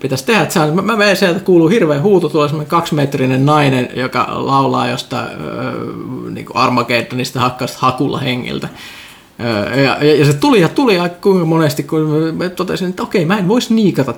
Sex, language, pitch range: male, Finnish, 125-160 Hz